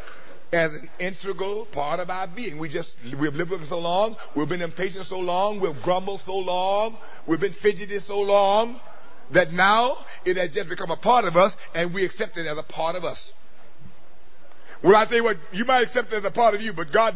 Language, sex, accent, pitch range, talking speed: English, male, American, 180-225 Hz, 225 wpm